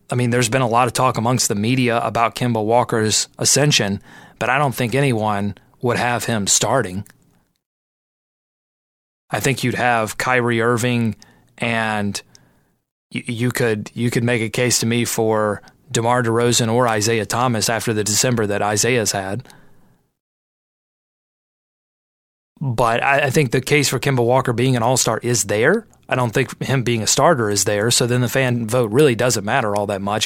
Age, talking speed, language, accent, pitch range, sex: 30-49, 175 wpm, English, American, 110-130 Hz, male